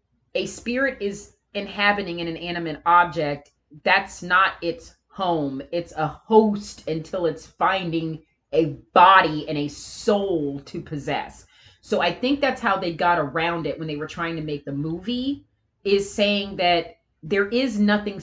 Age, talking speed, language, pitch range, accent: 30-49, 160 wpm, English, 160-215 Hz, American